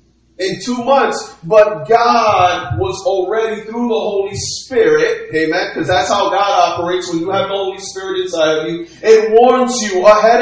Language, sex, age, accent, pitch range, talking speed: English, male, 30-49, American, 195-240 Hz, 175 wpm